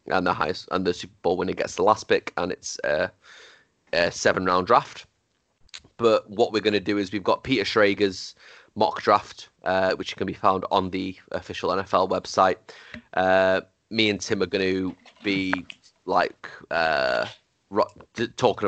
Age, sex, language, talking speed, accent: 30-49, male, English, 170 wpm, British